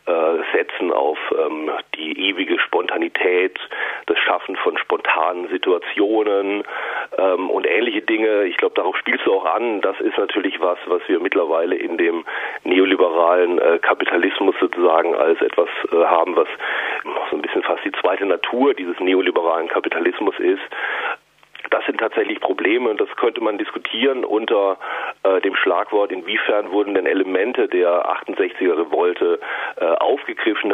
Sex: male